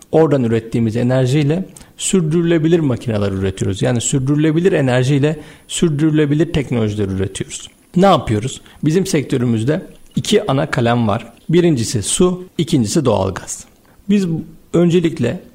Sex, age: male, 50-69